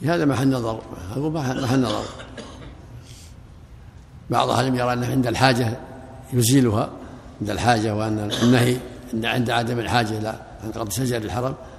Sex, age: male, 60-79